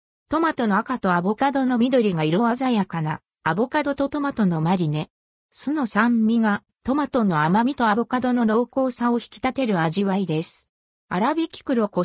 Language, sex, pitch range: Japanese, female, 175-255 Hz